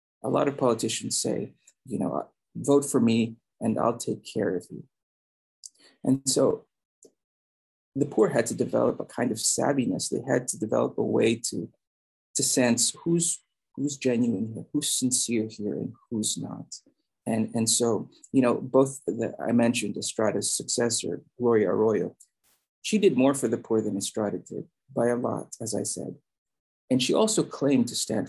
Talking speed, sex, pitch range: 170 wpm, male, 115-140 Hz